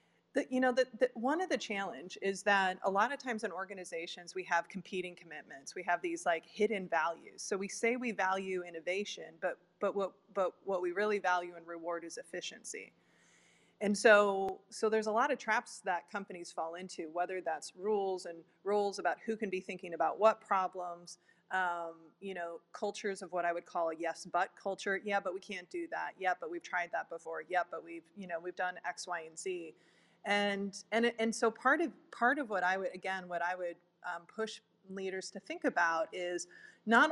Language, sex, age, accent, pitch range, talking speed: English, female, 20-39, American, 175-210 Hz, 205 wpm